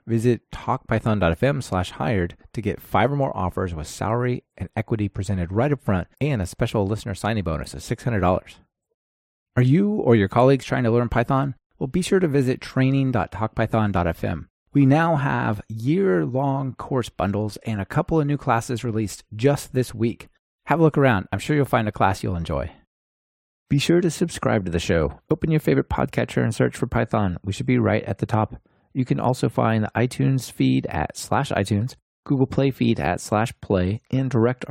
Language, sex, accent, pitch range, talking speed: English, male, American, 100-135 Hz, 190 wpm